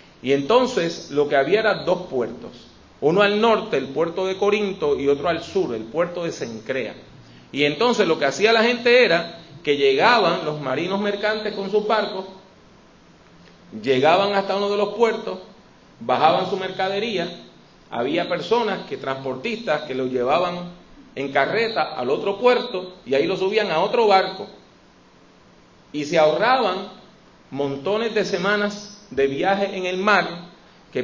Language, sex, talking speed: English, male, 155 wpm